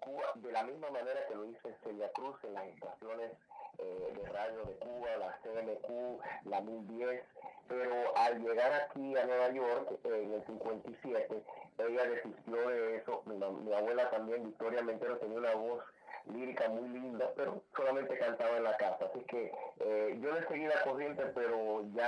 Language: English